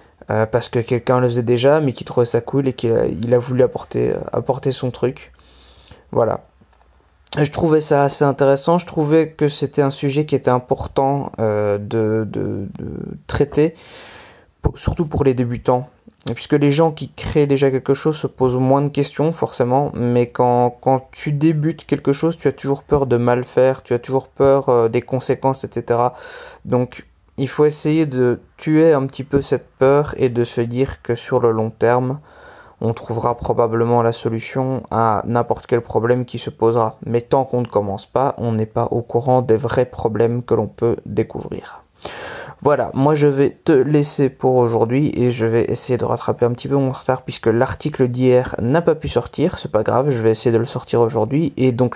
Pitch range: 115-140 Hz